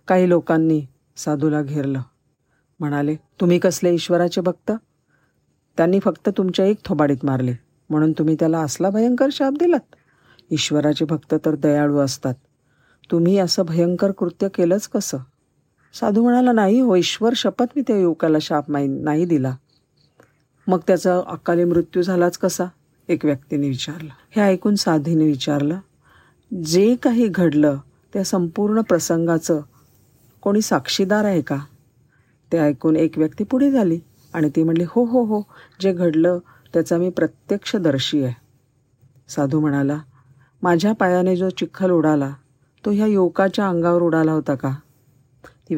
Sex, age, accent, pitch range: female, 50-69, native, 145-190 Hz